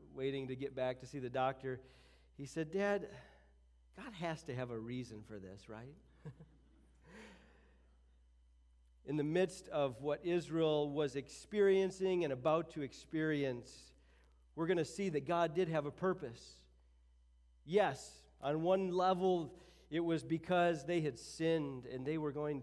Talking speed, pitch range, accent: 150 wpm, 125-170 Hz, American